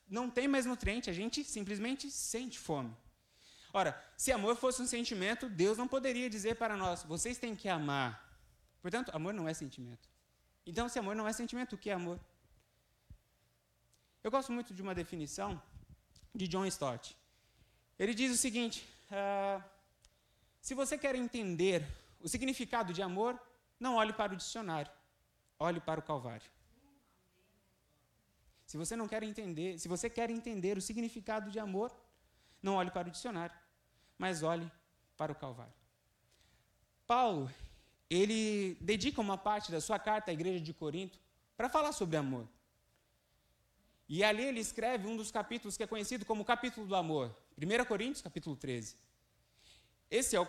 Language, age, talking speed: Portuguese, 20-39, 150 wpm